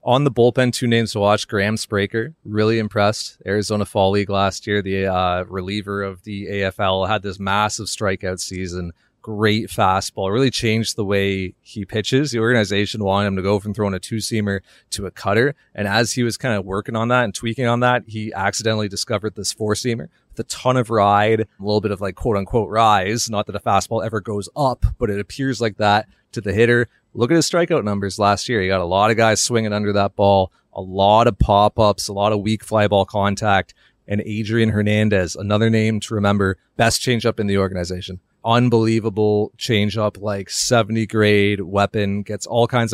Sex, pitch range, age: male, 100-115 Hz, 30-49